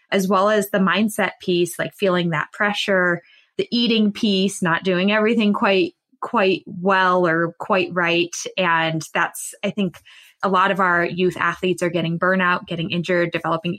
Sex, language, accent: female, English, American